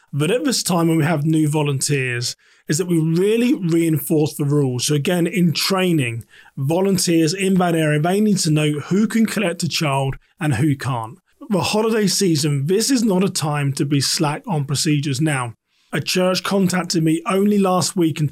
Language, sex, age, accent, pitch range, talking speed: English, male, 30-49, British, 150-185 Hz, 190 wpm